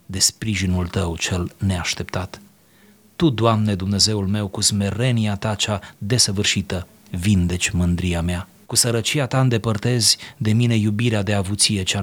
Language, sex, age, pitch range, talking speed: Romanian, male, 30-49, 95-115 Hz, 135 wpm